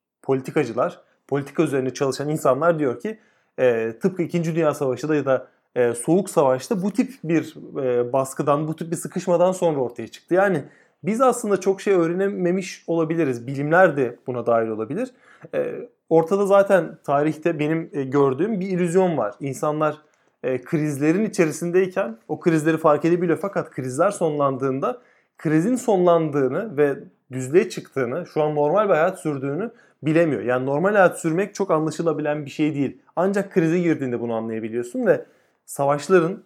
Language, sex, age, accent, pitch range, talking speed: Turkish, male, 30-49, native, 135-180 Hz, 145 wpm